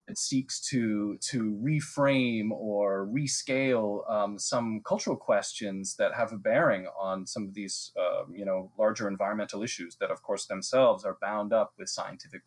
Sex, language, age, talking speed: male, English, 30-49, 150 wpm